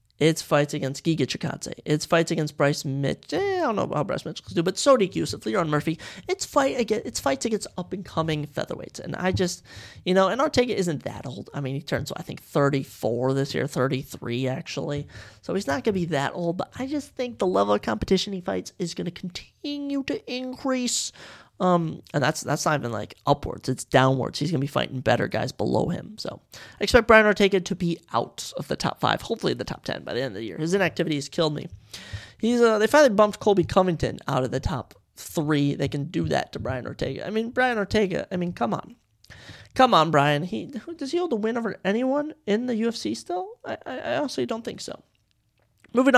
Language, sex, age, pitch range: English, male, 30-49, 135-215 Hz